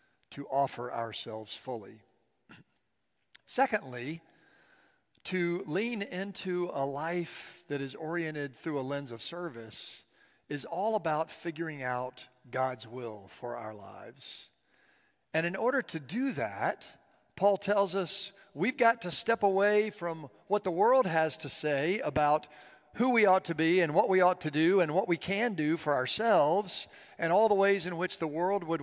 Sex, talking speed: male, 160 wpm